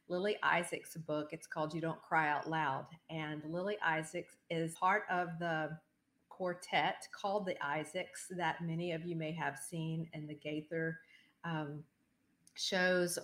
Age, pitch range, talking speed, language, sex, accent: 40-59, 155-190 Hz, 150 wpm, English, female, American